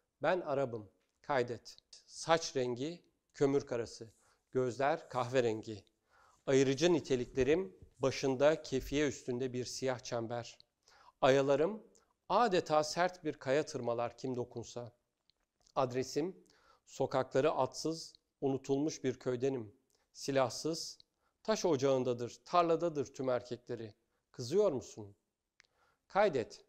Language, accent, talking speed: Turkish, native, 90 wpm